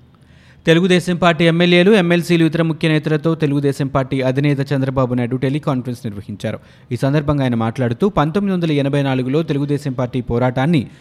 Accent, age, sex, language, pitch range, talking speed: native, 20-39, male, Telugu, 125-155 Hz, 120 wpm